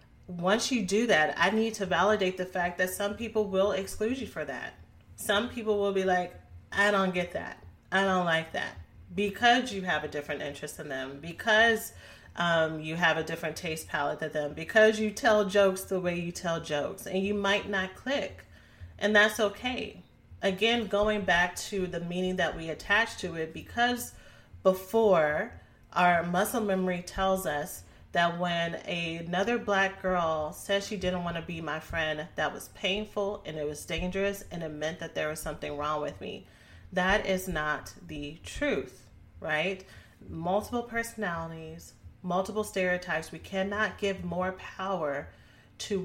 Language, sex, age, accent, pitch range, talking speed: English, female, 30-49, American, 155-200 Hz, 170 wpm